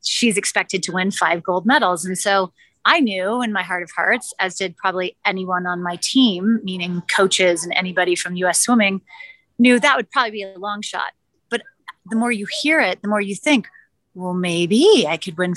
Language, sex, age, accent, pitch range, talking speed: English, female, 30-49, American, 180-230 Hz, 205 wpm